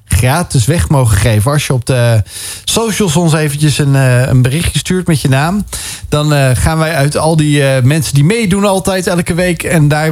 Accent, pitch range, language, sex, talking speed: Dutch, 130-170 Hz, Dutch, male, 200 wpm